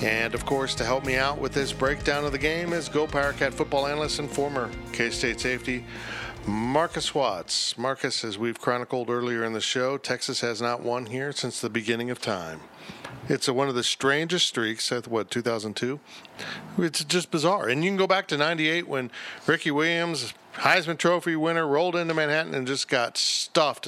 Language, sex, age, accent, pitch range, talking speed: English, male, 50-69, American, 115-150 Hz, 185 wpm